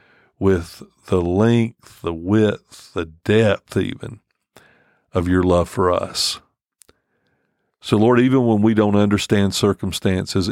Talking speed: 120 wpm